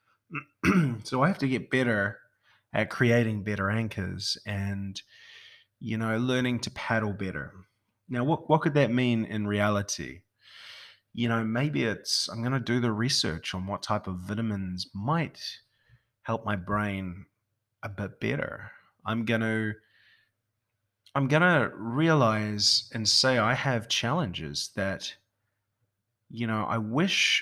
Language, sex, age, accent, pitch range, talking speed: English, male, 20-39, Australian, 100-120 Hz, 140 wpm